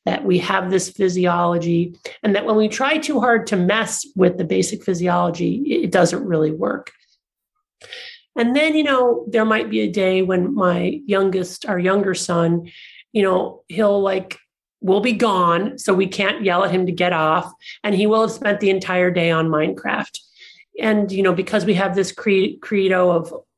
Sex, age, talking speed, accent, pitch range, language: male, 40-59, 185 wpm, American, 180-225 Hz, English